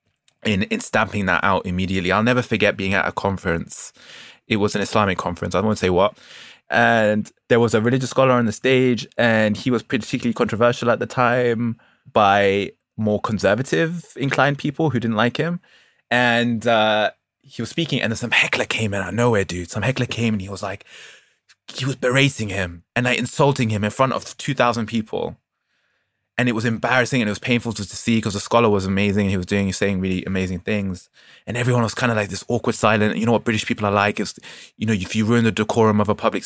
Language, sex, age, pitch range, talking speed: English, male, 20-39, 105-135 Hz, 225 wpm